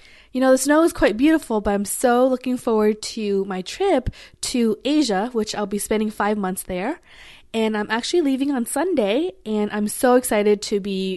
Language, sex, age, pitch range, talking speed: English, female, 20-39, 210-270 Hz, 195 wpm